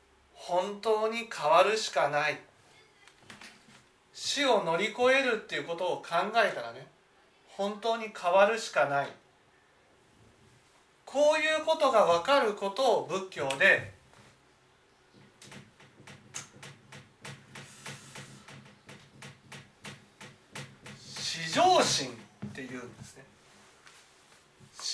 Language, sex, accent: Japanese, male, native